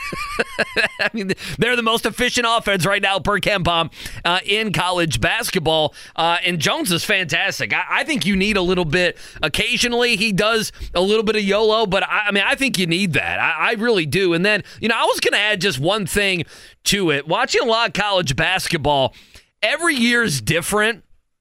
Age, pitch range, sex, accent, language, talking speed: 30-49, 170-215 Hz, male, American, English, 205 wpm